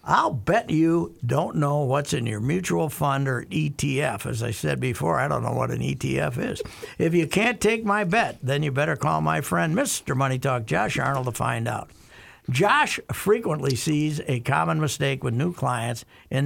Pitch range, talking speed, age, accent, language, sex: 130-175 Hz, 195 wpm, 60-79, American, English, male